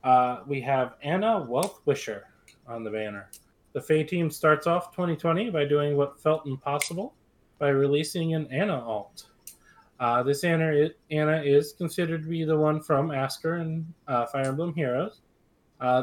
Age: 20-39